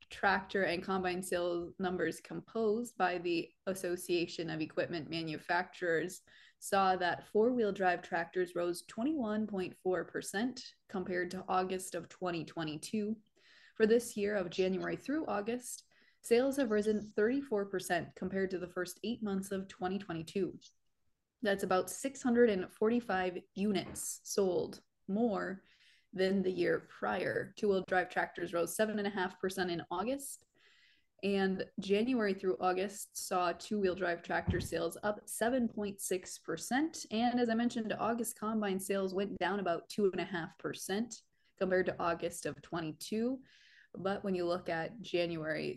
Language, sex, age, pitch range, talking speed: English, female, 20-39, 180-215 Hz, 120 wpm